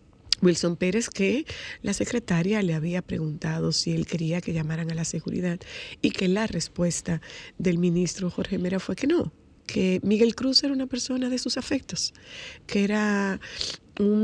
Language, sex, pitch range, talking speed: Spanish, female, 165-195 Hz, 165 wpm